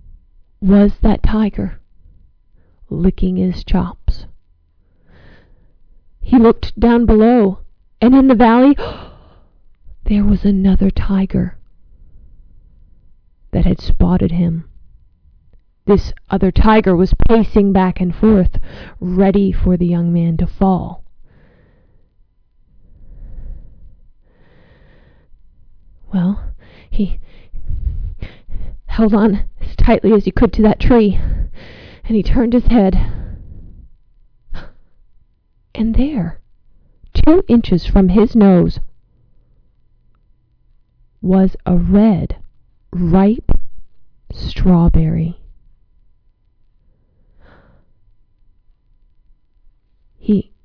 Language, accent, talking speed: English, American, 80 wpm